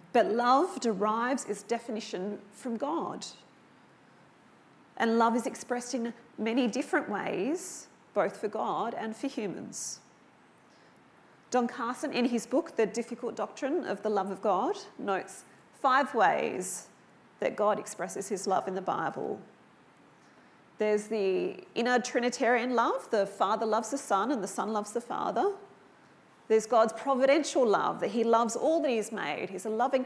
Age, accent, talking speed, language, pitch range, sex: 40-59, Australian, 150 wpm, English, 210-255 Hz, female